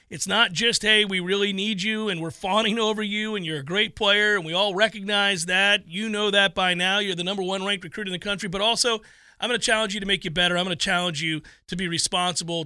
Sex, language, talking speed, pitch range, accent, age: male, English, 265 wpm, 165-210 Hz, American, 40-59